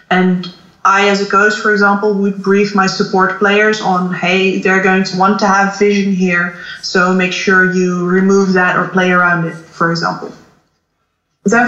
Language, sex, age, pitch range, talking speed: English, female, 20-39, 190-225 Hz, 180 wpm